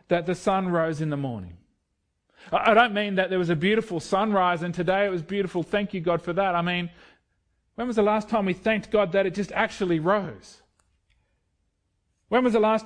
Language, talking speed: English, 210 wpm